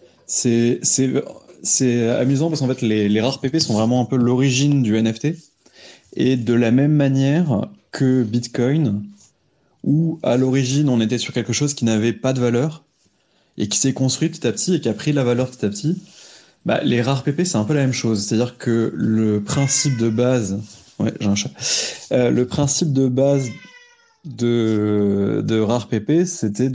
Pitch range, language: 110-135 Hz, French